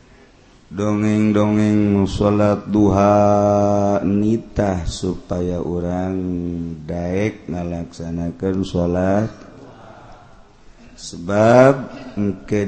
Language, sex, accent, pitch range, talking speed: Indonesian, male, native, 90-105 Hz, 50 wpm